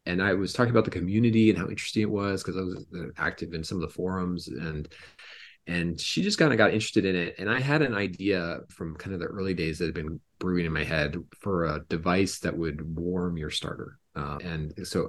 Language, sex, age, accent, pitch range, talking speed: English, male, 30-49, American, 80-100 Hz, 240 wpm